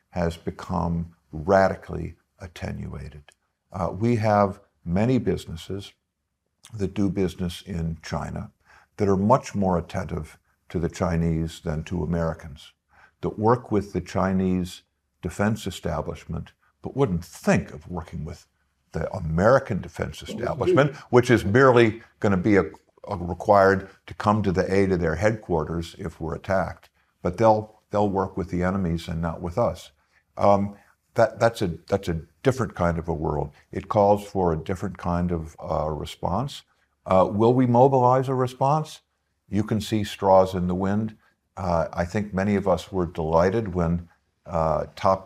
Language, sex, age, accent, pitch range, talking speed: English, male, 50-69, American, 85-100 Hz, 150 wpm